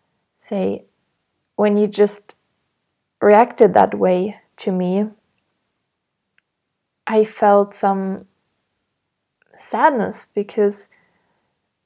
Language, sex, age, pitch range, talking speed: English, female, 20-39, 200-225 Hz, 70 wpm